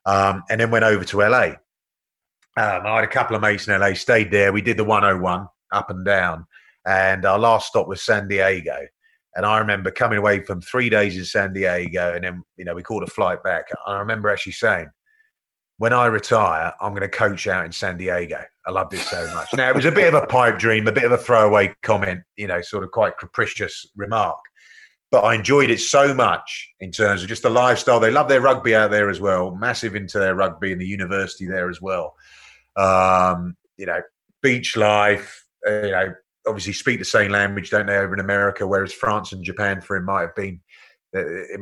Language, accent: English, British